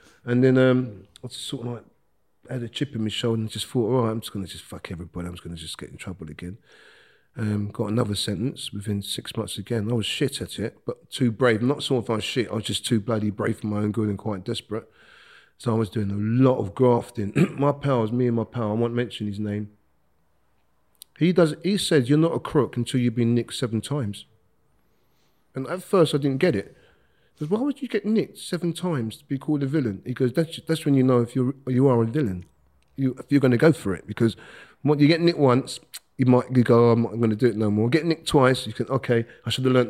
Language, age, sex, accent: English, 40-59, male, British